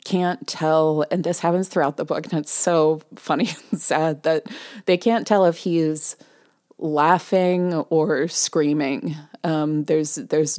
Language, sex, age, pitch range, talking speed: English, female, 30-49, 150-170 Hz, 145 wpm